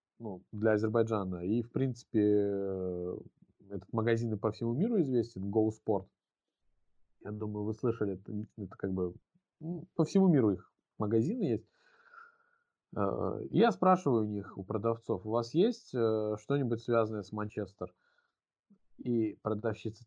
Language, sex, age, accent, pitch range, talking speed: Russian, male, 20-39, native, 105-140 Hz, 135 wpm